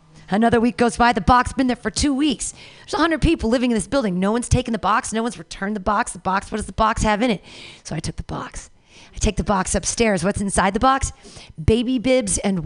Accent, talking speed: American, 260 wpm